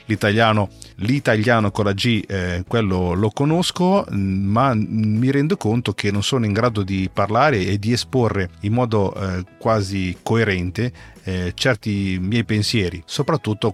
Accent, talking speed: native, 145 wpm